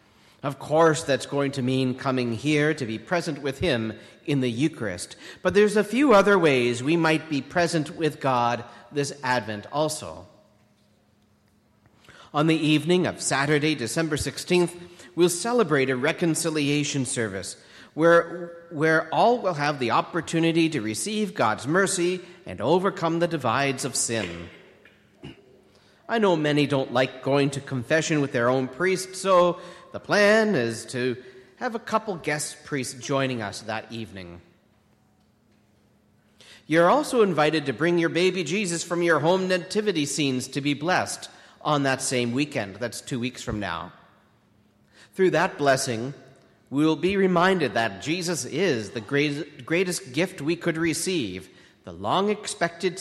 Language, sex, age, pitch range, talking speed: English, male, 40-59, 120-170 Hz, 145 wpm